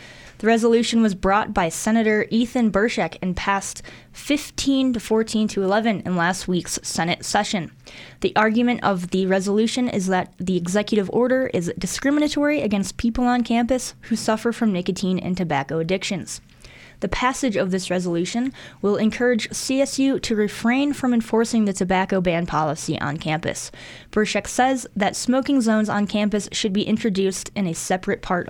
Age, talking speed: 10-29, 160 wpm